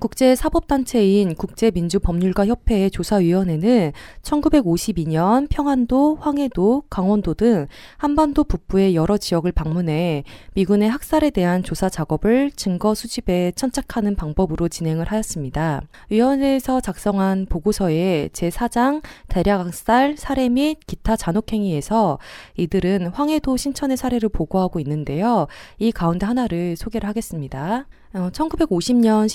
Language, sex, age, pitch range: Korean, female, 20-39, 175-250 Hz